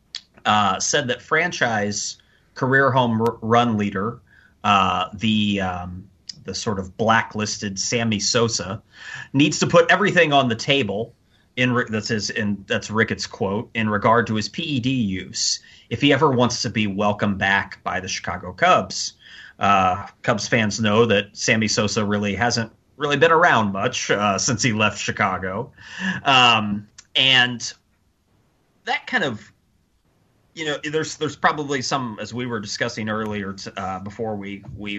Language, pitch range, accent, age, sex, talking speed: English, 100-115 Hz, American, 30-49, male, 155 wpm